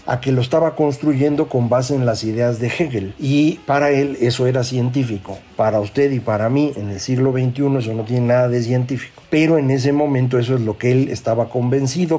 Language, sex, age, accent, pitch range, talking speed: Spanish, male, 50-69, Mexican, 115-145 Hz, 215 wpm